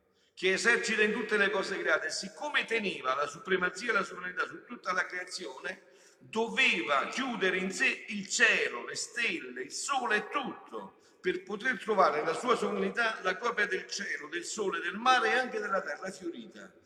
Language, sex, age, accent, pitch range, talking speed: Italian, male, 50-69, native, 185-240 Hz, 175 wpm